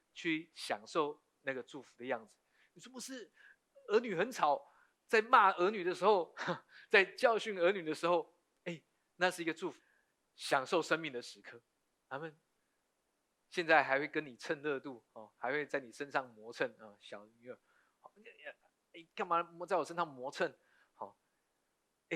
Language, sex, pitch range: Chinese, male, 130-180 Hz